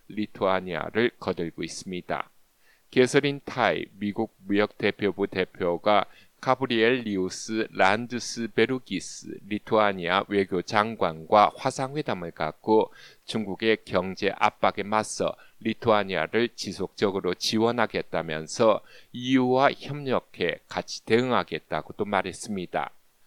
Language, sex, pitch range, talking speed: English, male, 100-125 Hz, 70 wpm